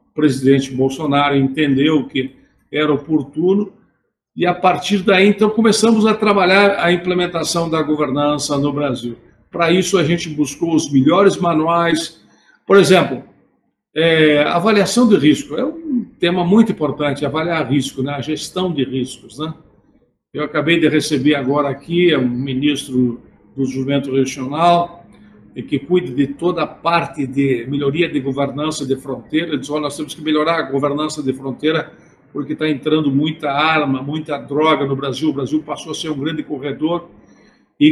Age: 60-79